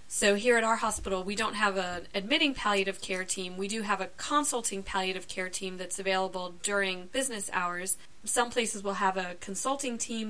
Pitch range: 190-230 Hz